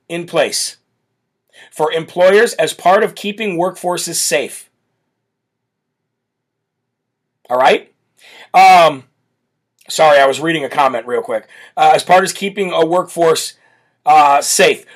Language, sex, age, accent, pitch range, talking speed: English, male, 40-59, American, 155-195 Hz, 120 wpm